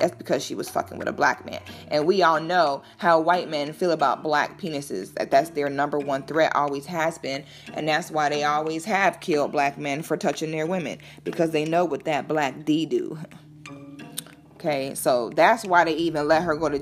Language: English